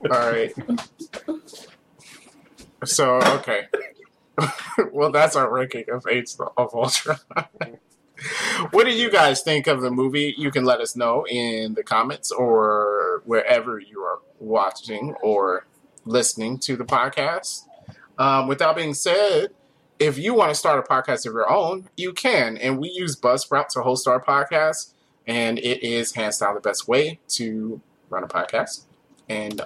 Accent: American